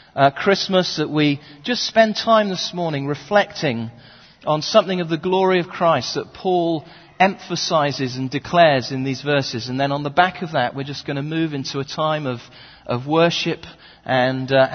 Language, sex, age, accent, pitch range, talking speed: English, male, 40-59, British, 145-205 Hz, 185 wpm